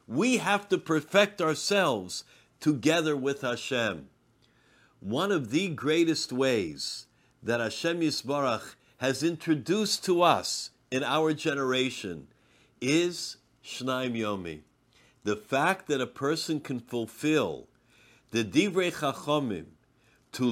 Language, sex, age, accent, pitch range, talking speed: English, male, 50-69, American, 140-175 Hz, 110 wpm